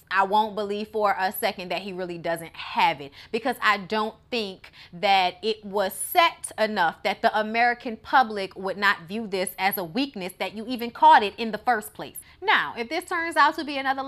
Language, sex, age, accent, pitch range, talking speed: English, female, 30-49, American, 200-260 Hz, 210 wpm